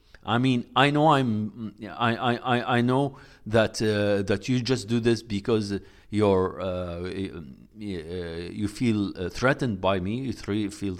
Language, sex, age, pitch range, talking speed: English, male, 50-69, 90-120 Hz, 140 wpm